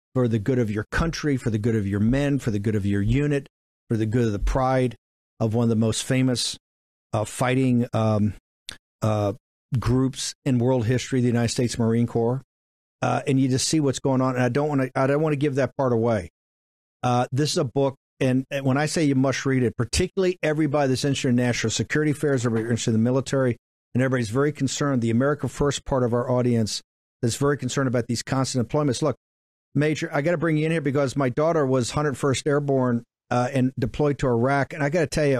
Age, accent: 50-69, American